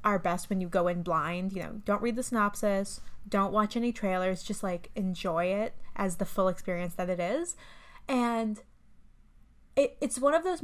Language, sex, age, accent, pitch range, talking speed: English, female, 20-39, American, 185-235 Hz, 190 wpm